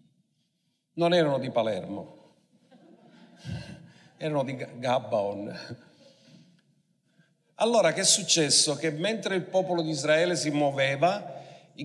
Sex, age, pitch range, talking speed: male, 50-69, 140-175 Hz, 100 wpm